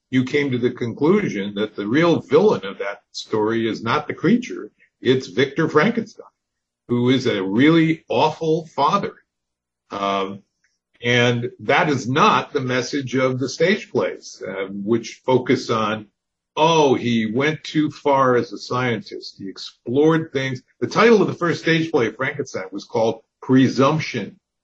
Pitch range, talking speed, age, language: 115-160 Hz, 155 wpm, 50-69, English